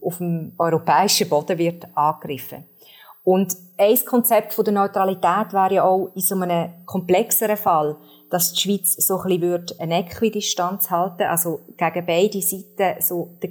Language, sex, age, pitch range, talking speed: German, female, 30-49, 170-200 Hz, 155 wpm